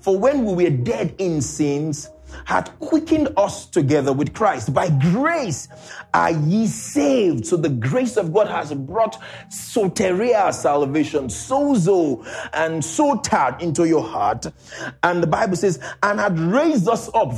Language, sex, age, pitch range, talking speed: English, male, 30-49, 145-220 Hz, 150 wpm